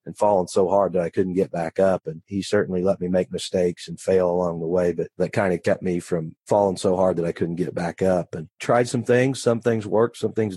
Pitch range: 90-100 Hz